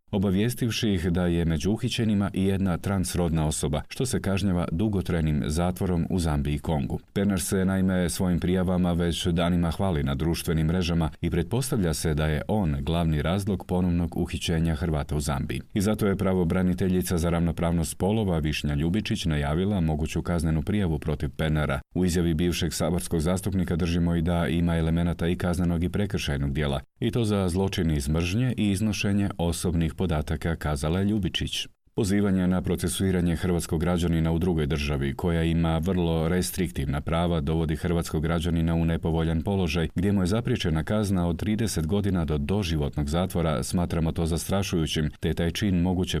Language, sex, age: Croatian, male, 40-59